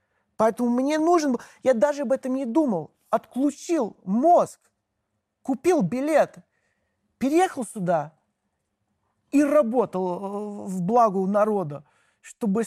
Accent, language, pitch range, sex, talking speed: native, Russian, 180-245 Hz, male, 105 wpm